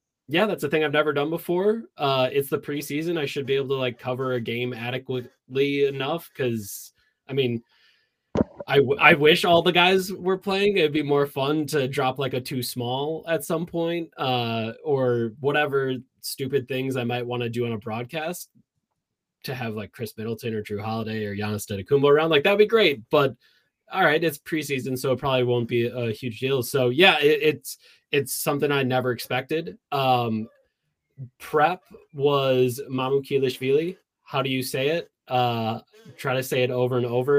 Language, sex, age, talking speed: English, male, 20-39, 190 wpm